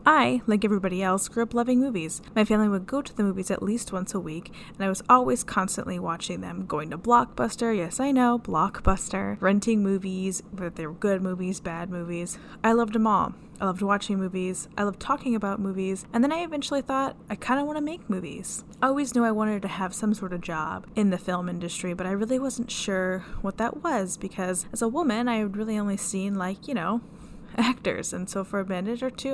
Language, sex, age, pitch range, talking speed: English, female, 10-29, 185-235 Hz, 225 wpm